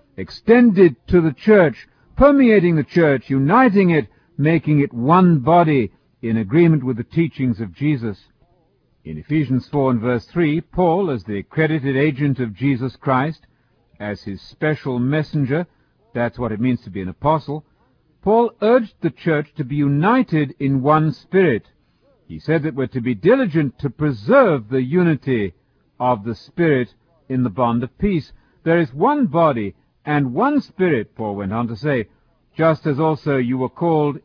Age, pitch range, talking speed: 50-69, 125-165 Hz, 165 wpm